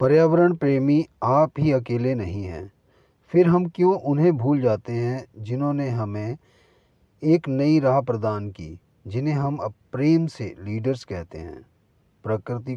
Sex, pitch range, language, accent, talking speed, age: male, 100-135 Hz, Hindi, native, 135 wpm, 30-49